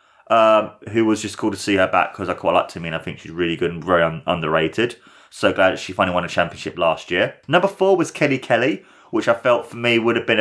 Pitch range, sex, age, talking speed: 90-110 Hz, male, 30-49, 270 wpm